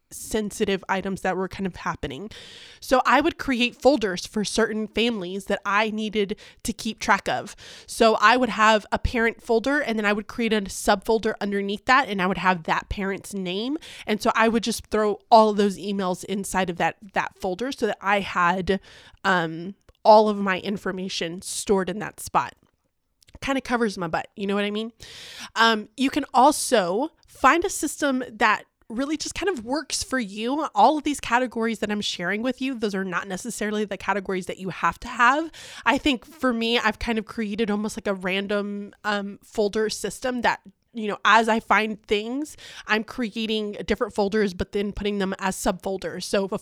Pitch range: 195-230 Hz